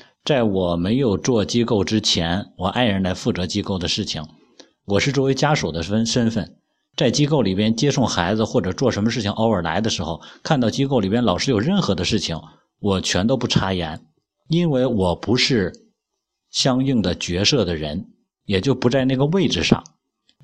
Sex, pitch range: male, 95-135 Hz